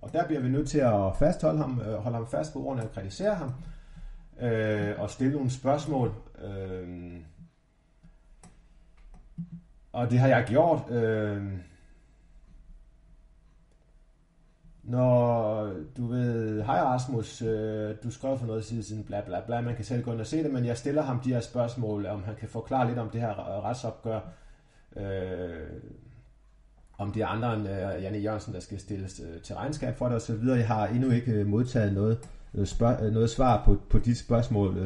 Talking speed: 165 wpm